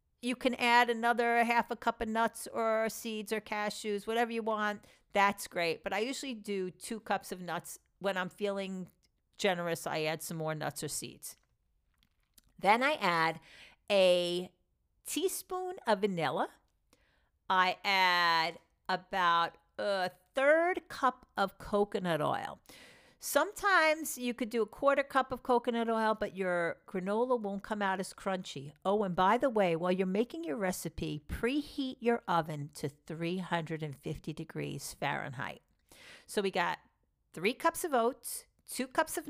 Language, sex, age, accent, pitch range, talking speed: English, female, 50-69, American, 180-235 Hz, 150 wpm